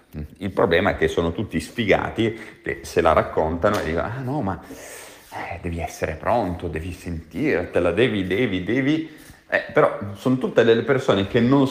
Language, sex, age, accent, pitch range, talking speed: Italian, male, 30-49, native, 90-115 Hz, 165 wpm